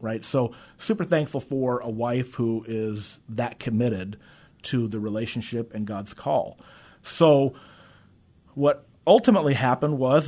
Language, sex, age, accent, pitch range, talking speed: English, male, 30-49, American, 110-130 Hz, 130 wpm